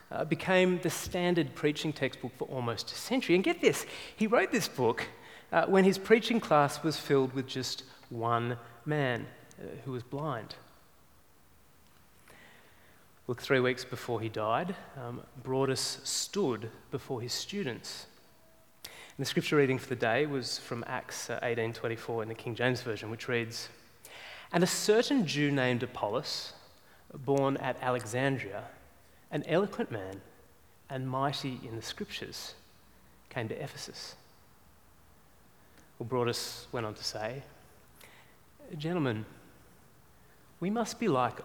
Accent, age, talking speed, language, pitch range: Australian, 30-49, 135 wpm, English, 115-155 Hz